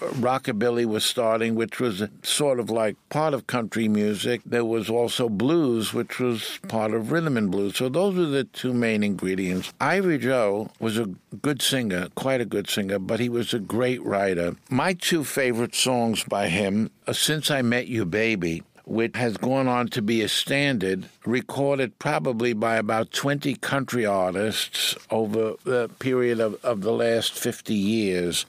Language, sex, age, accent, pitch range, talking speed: English, male, 60-79, American, 110-130 Hz, 175 wpm